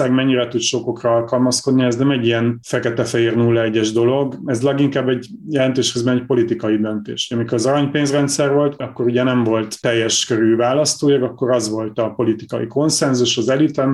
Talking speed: 170 wpm